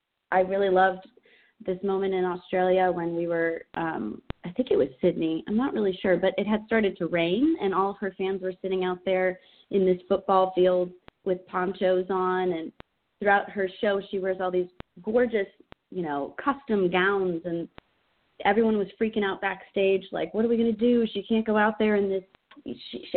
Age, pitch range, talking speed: 30-49, 180-200 Hz, 190 wpm